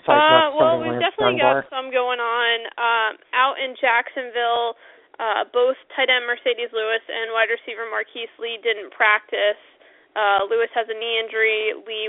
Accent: American